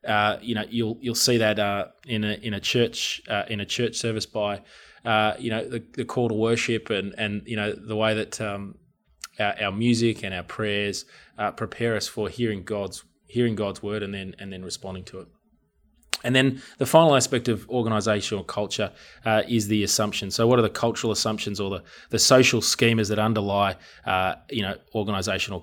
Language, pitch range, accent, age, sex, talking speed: English, 105-120 Hz, Australian, 20-39, male, 200 wpm